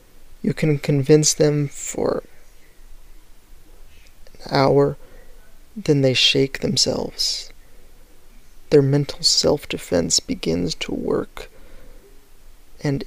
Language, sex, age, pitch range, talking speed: English, male, 20-39, 135-175 Hz, 85 wpm